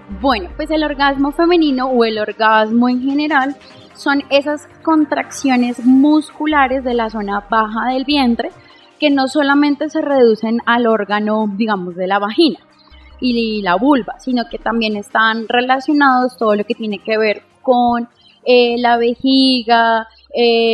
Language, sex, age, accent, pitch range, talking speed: Spanish, female, 20-39, Colombian, 225-280 Hz, 145 wpm